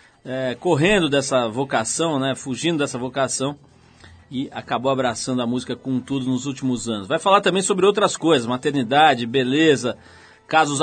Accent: Brazilian